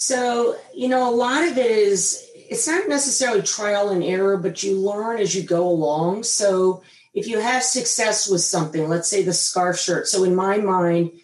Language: English